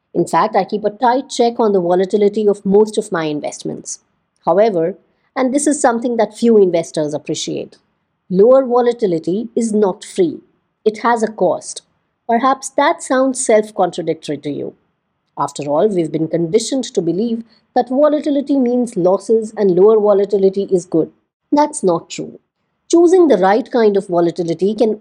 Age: 50-69